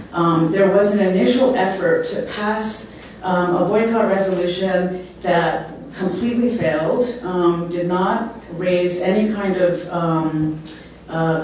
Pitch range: 170-200 Hz